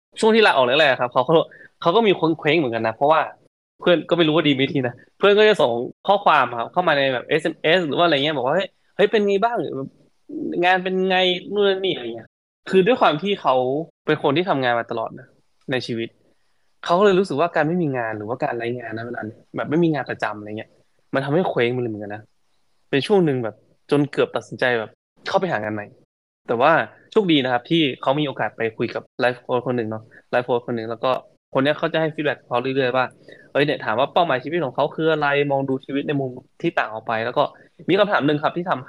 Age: 20-39